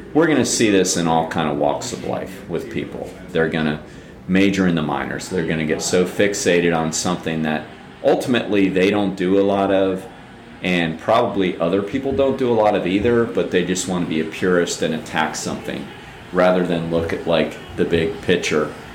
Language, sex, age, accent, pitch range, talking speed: English, male, 40-59, American, 80-95 Hz, 210 wpm